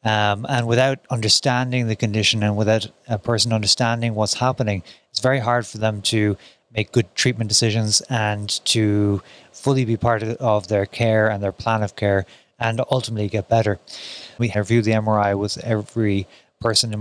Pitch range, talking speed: 105-120 Hz, 175 wpm